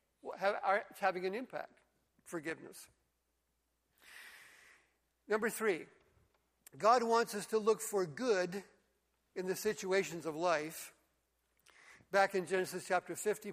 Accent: American